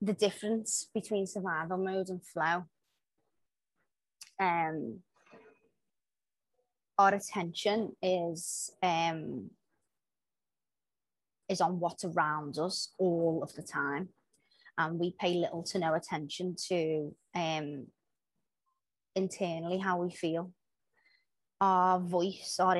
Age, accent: 20-39, British